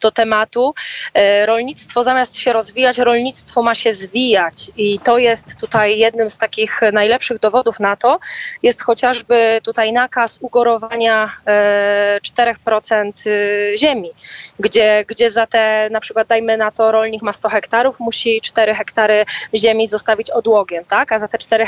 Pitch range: 210-235 Hz